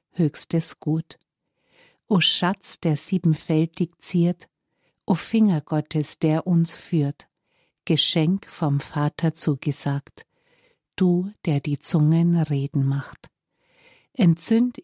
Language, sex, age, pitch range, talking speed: German, female, 50-69, 150-175 Hz, 95 wpm